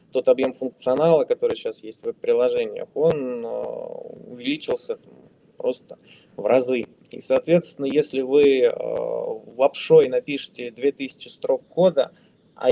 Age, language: 20-39, Russian